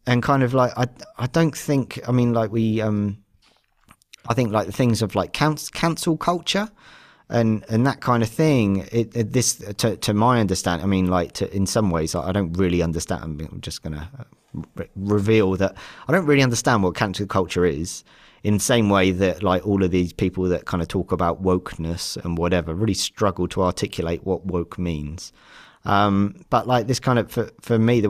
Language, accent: English, British